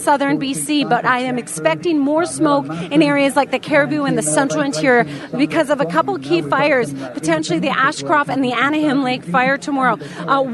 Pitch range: 250-320 Hz